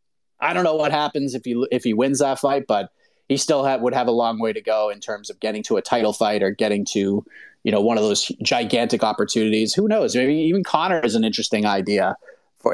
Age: 30-49